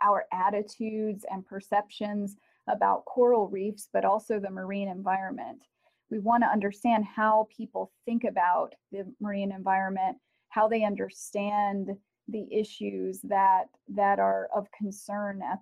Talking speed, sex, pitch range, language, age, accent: 125 wpm, female, 195-220 Hz, English, 30-49, American